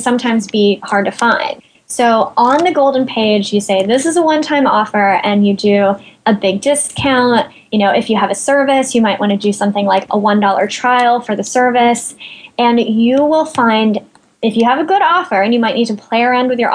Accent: American